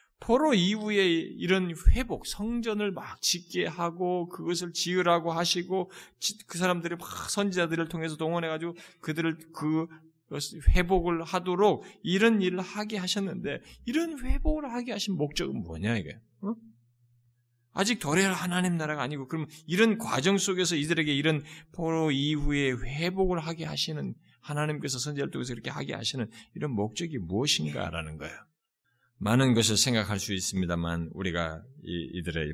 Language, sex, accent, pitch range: Korean, male, native, 120-195 Hz